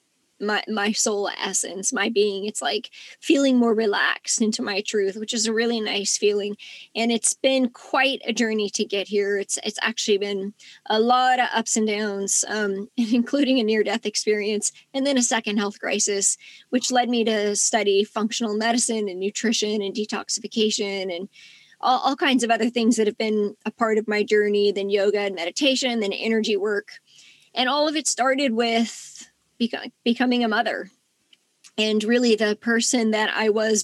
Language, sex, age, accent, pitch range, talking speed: English, female, 20-39, American, 210-245 Hz, 175 wpm